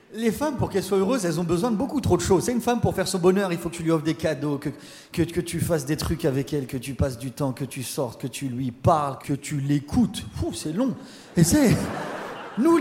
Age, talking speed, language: 30-49, 275 wpm, French